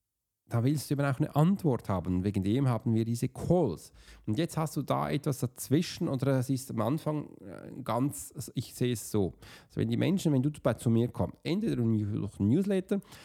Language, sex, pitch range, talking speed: German, male, 115-155 Hz, 205 wpm